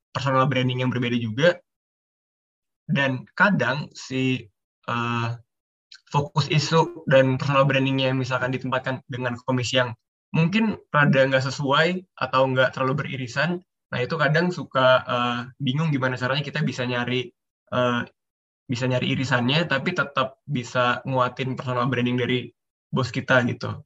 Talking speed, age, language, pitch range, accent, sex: 135 wpm, 20-39, Indonesian, 125-150 Hz, native, male